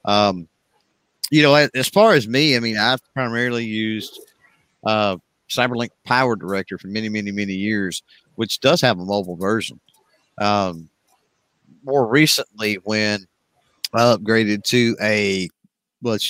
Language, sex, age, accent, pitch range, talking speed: English, male, 50-69, American, 95-115 Hz, 135 wpm